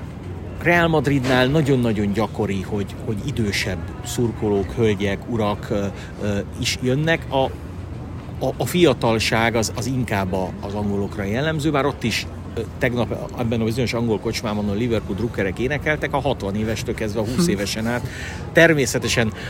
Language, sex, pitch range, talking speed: Hungarian, male, 100-130 Hz, 135 wpm